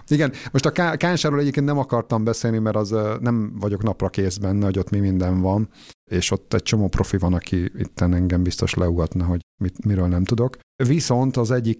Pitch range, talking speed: 90-110 Hz, 205 wpm